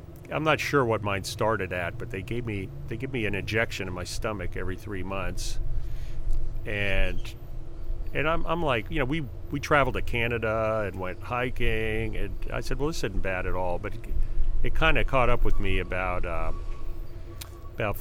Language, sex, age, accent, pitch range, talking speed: English, male, 40-59, American, 90-115 Hz, 195 wpm